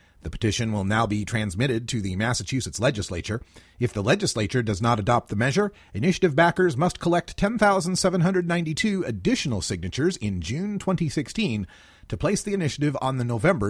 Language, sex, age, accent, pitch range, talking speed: English, male, 40-59, American, 105-170 Hz, 155 wpm